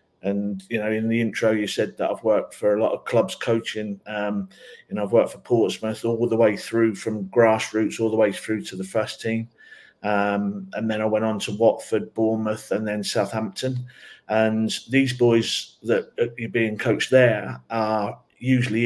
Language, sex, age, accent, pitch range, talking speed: English, male, 50-69, British, 105-115 Hz, 190 wpm